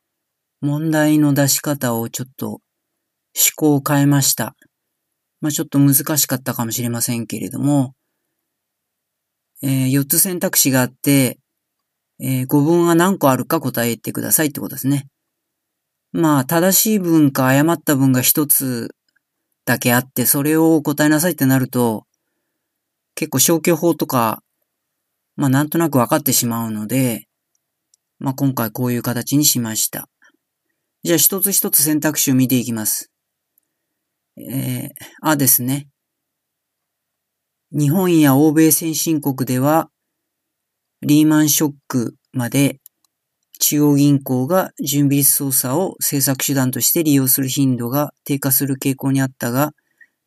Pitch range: 130-150 Hz